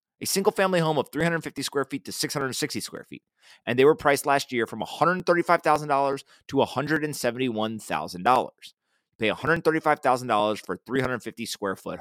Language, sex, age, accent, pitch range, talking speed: English, male, 30-49, American, 115-145 Hz, 130 wpm